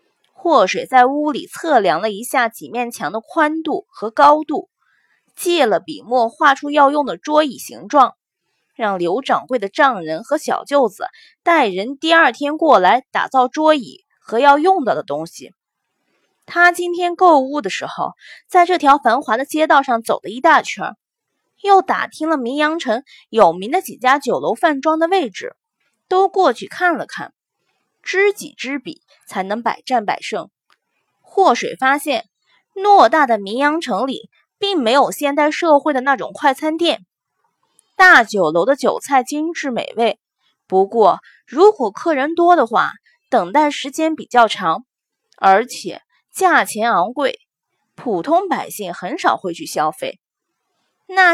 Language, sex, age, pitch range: Chinese, female, 20-39, 250-350 Hz